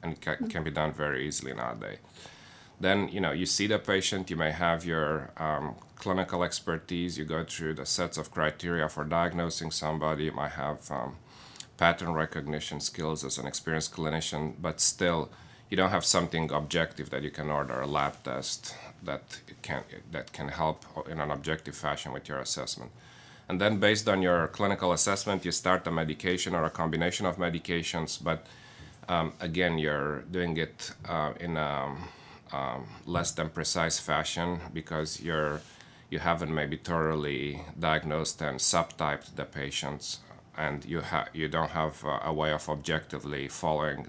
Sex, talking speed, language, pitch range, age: male, 165 wpm, English, 75-85 Hz, 30-49